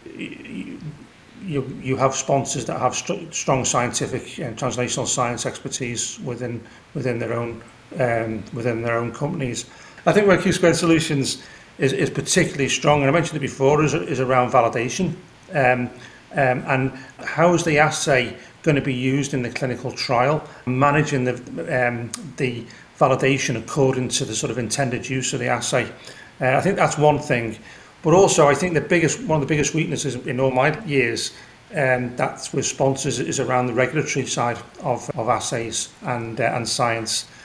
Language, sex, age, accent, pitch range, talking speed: English, male, 40-59, British, 125-145 Hz, 170 wpm